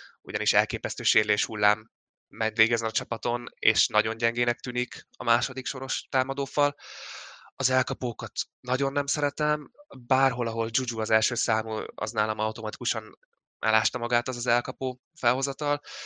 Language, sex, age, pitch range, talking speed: Hungarian, male, 20-39, 110-130 Hz, 130 wpm